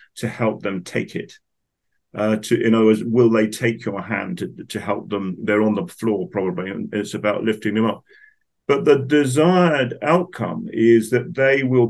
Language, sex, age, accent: English, male, 50-69, British